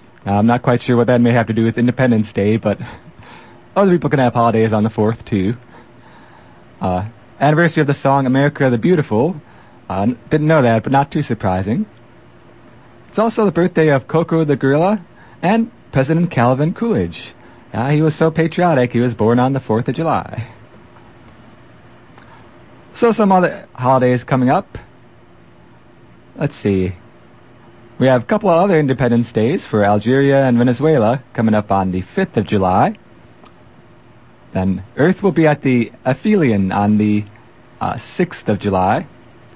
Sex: male